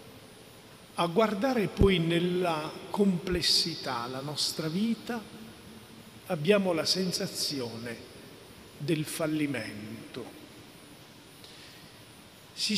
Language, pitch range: Italian, 160-195 Hz